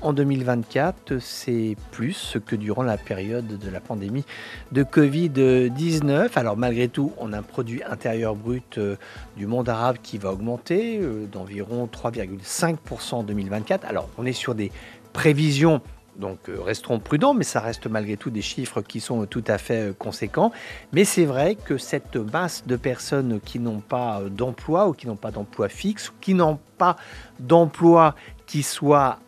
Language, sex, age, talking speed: English, male, 50-69, 160 wpm